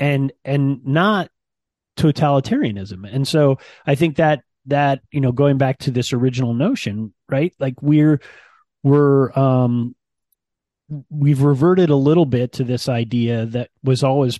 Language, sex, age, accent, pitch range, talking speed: English, male, 30-49, American, 115-145 Hz, 140 wpm